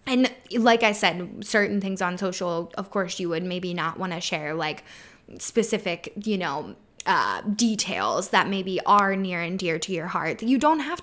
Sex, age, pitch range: female, 10-29, 190-245 Hz